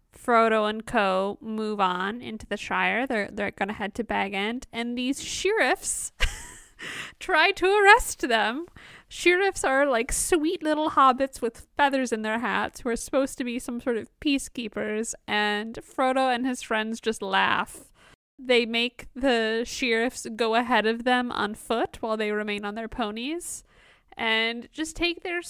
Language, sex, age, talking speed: English, female, 10-29, 160 wpm